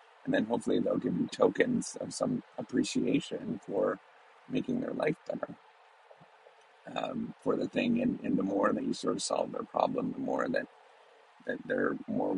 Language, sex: English, male